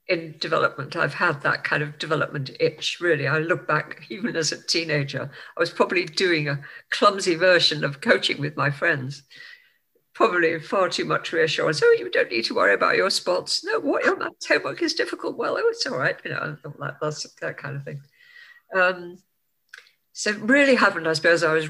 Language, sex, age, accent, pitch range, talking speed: English, female, 50-69, British, 150-185 Hz, 195 wpm